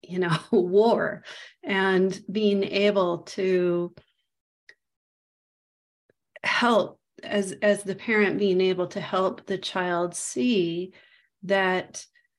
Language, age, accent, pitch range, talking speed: English, 40-59, American, 175-205 Hz, 95 wpm